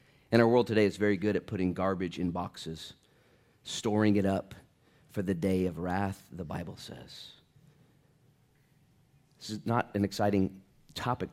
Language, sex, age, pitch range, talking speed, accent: English, male, 30-49, 95-145 Hz, 155 wpm, American